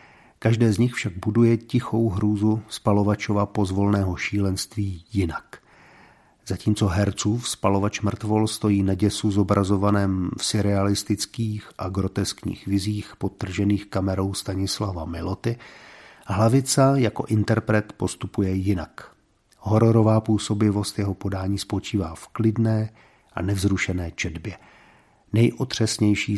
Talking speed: 100 wpm